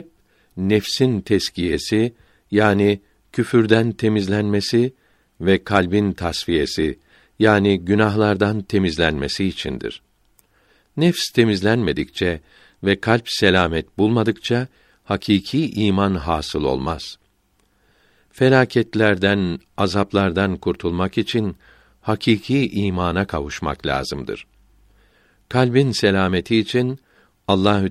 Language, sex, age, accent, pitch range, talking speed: Turkish, male, 60-79, native, 95-115 Hz, 75 wpm